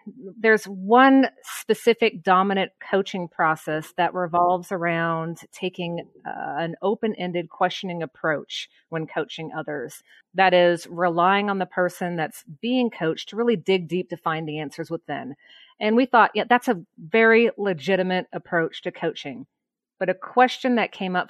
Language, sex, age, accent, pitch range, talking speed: English, female, 40-59, American, 165-205 Hz, 150 wpm